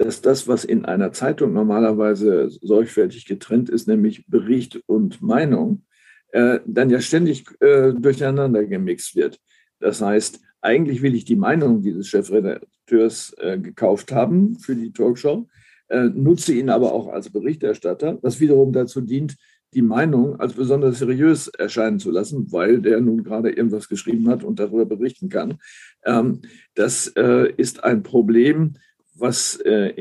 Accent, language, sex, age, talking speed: German, German, male, 50-69, 150 wpm